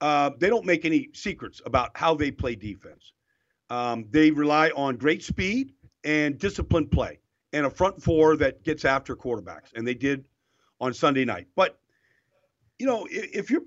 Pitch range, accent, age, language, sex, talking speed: 135-185 Hz, American, 50-69, English, male, 175 wpm